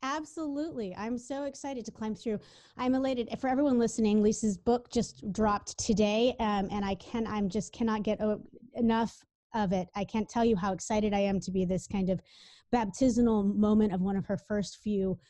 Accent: American